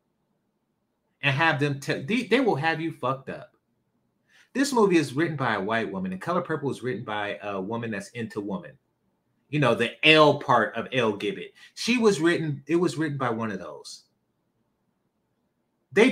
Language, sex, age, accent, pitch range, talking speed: English, male, 30-49, American, 110-155 Hz, 180 wpm